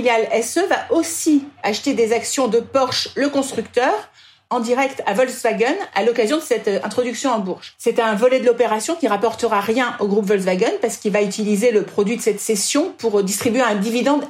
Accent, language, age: French, French, 50-69